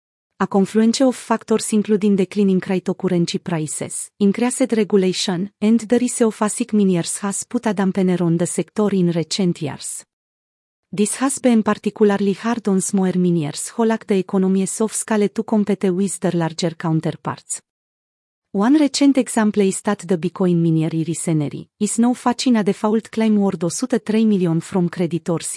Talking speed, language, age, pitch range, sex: 155 wpm, Romanian, 30-49, 170-215 Hz, female